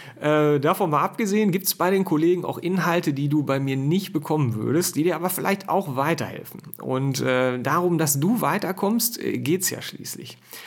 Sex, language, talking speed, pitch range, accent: male, German, 185 wpm, 130-170 Hz, German